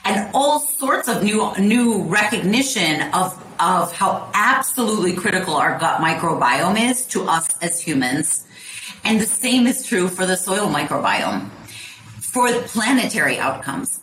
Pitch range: 170-220 Hz